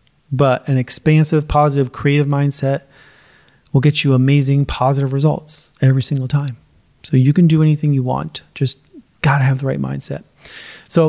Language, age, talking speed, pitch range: English, 30-49, 160 wpm, 135-160 Hz